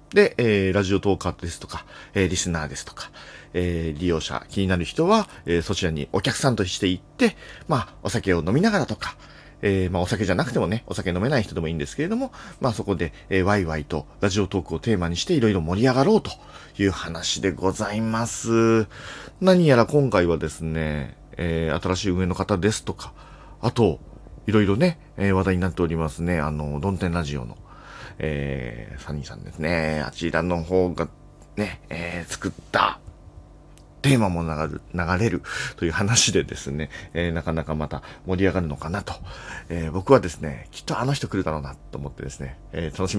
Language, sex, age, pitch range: Japanese, male, 40-59, 80-105 Hz